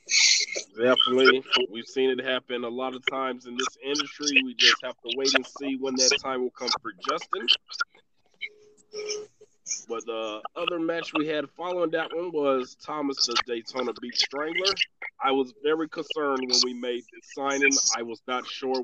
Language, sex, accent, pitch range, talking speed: English, male, American, 135-200 Hz, 170 wpm